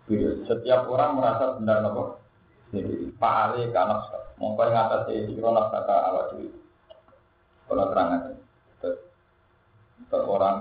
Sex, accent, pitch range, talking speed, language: male, native, 105-130 Hz, 70 wpm, Indonesian